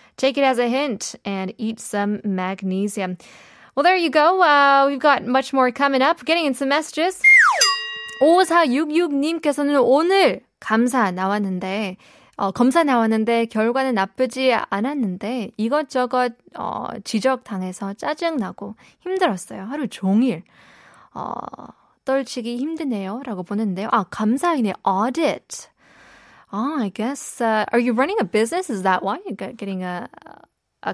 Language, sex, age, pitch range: Korean, female, 20-39, 205-285 Hz